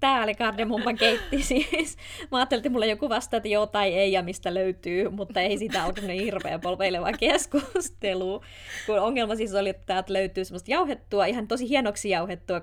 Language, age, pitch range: Finnish, 20-39, 185-210 Hz